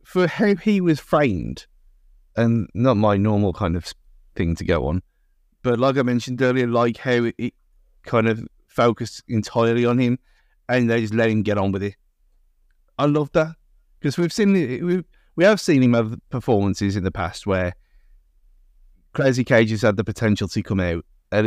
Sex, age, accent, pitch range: male, 30-49, British, 100-125 Hz